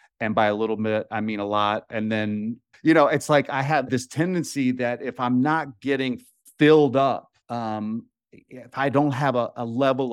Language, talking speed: English, 200 wpm